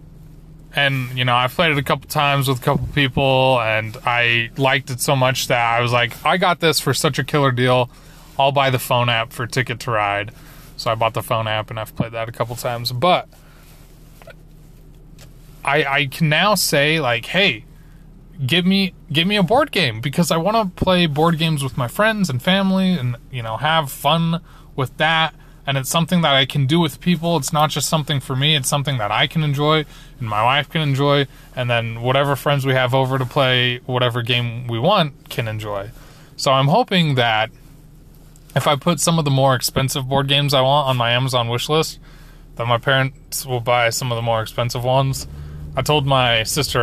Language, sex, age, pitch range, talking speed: English, male, 20-39, 125-155 Hz, 210 wpm